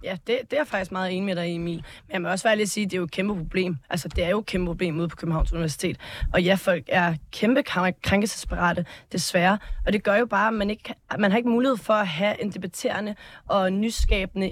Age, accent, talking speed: 20-39, native, 255 wpm